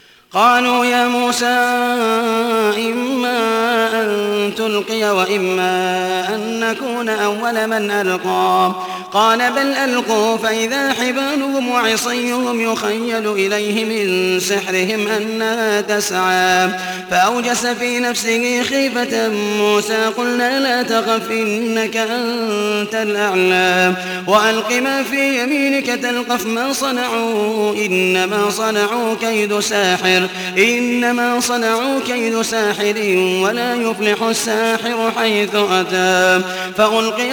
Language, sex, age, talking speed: Arabic, male, 30-49, 90 wpm